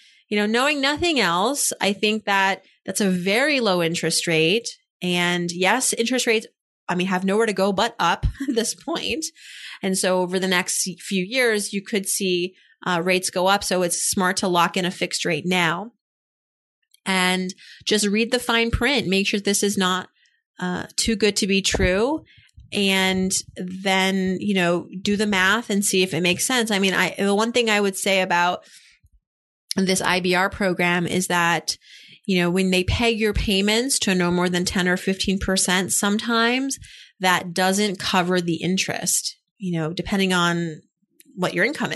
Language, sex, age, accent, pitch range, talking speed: English, female, 30-49, American, 180-215 Hz, 175 wpm